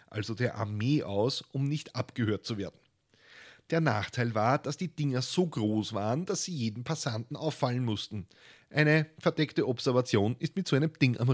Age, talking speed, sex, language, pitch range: 30-49, 175 wpm, male, German, 105-140 Hz